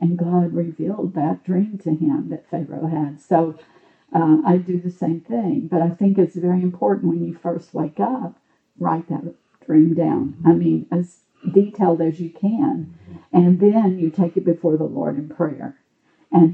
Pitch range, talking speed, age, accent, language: 160-185 Hz, 180 wpm, 50-69, American, English